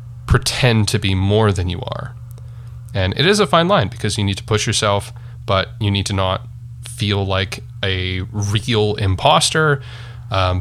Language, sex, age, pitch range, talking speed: English, male, 30-49, 100-120 Hz, 170 wpm